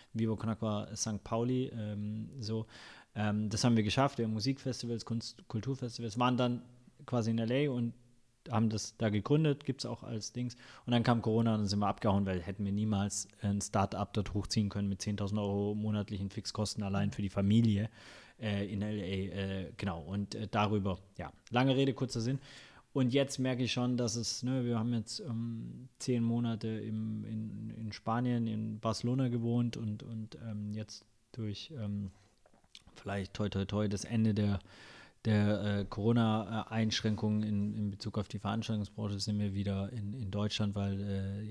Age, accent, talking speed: 30-49, German, 175 wpm